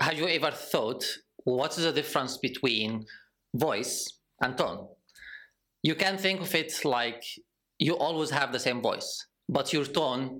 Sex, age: male, 20-39